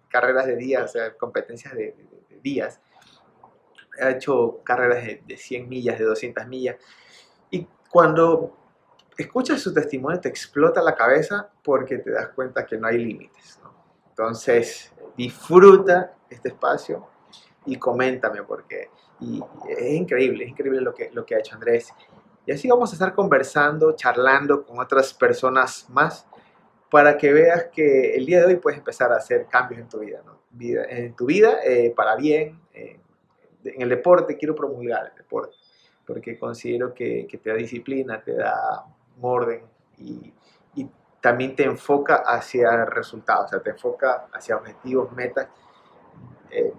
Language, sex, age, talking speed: Spanish, male, 30-49, 160 wpm